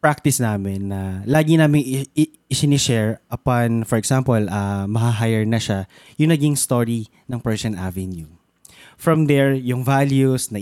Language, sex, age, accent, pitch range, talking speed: Filipino, male, 20-39, native, 110-145 Hz, 155 wpm